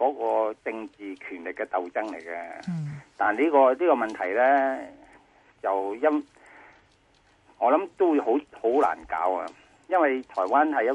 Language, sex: Chinese, male